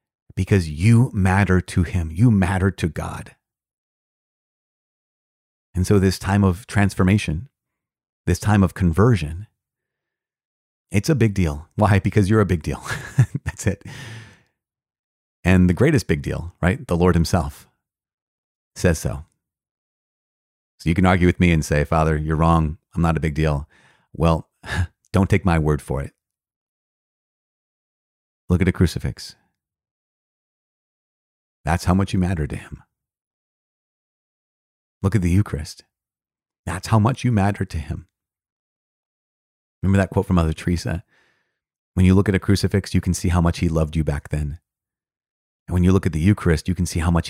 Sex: male